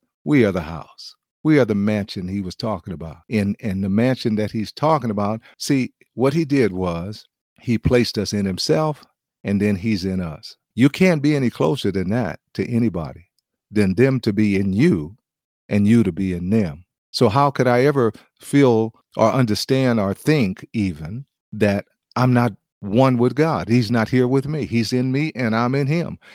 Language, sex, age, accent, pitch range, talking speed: English, male, 50-69, American, 100-135 Hz, 195 wpm